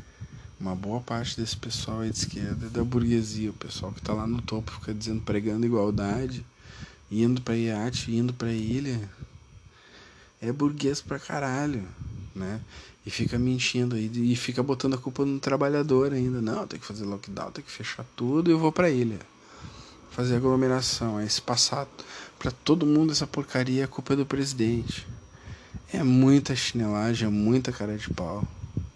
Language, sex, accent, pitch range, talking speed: Portuguese, male, Brazilian, 110-135 Hz, 170 wpm